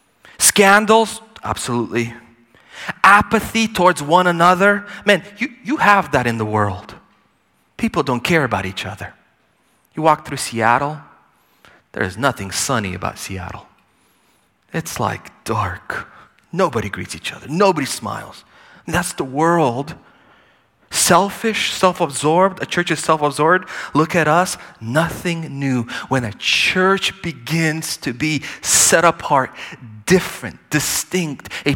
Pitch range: 120-180 Hz